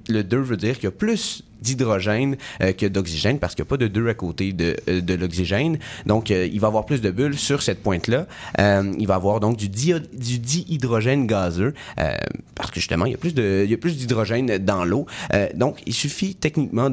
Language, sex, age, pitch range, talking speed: French, male, 30-49, 95-130 Hz, 235 wpm